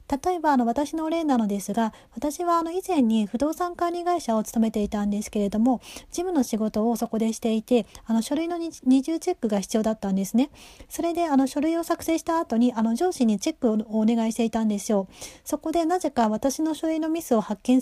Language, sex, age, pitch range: Japanese, female, 30-49, 220-310 Hz